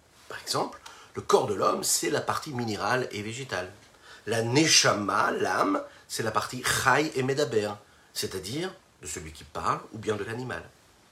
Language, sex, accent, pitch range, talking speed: French, male, French, 110-155 Hz, 160 wpm